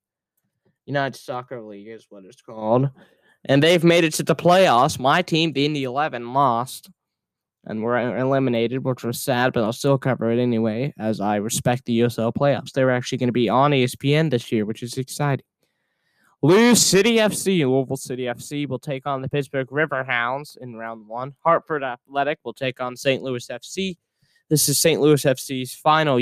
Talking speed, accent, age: 175 wpm, American, 10-29